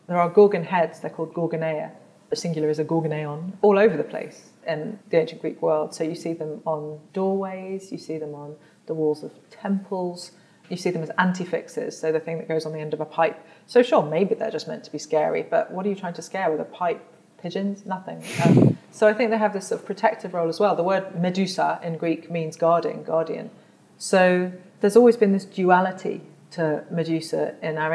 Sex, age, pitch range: female, 30-49, 160-210 Hz